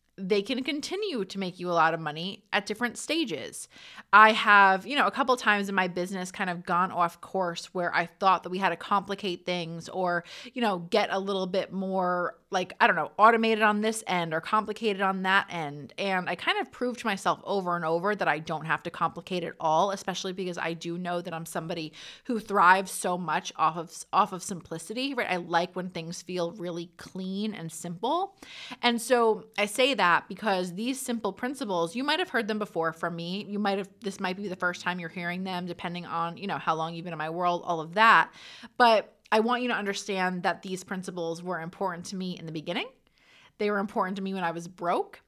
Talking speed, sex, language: 225 wpm, female, English